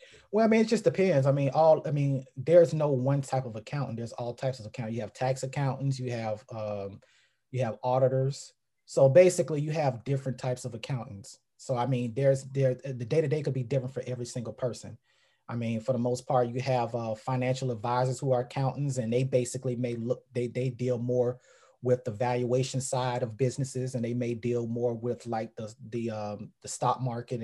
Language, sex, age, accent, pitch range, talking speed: English, male, 30-49, American, 115-135 Hz, 210 wpm